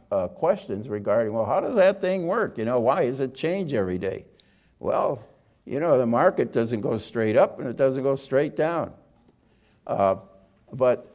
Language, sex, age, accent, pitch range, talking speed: English, male, 60-79, American, 110-155 Hz, 185 wpm